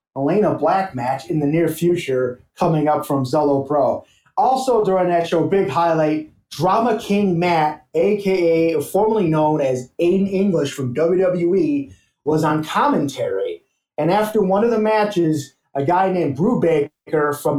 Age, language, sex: 30-49, English, male